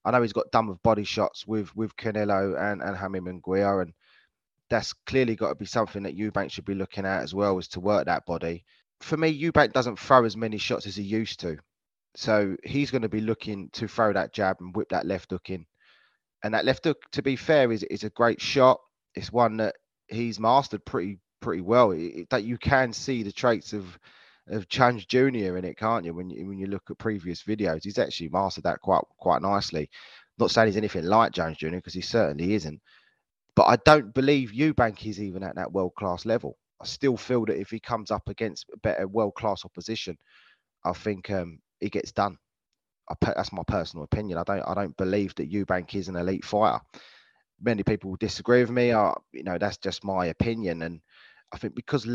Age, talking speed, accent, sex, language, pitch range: 20-39, 220 wpm, British, male, English, 95-115 Hz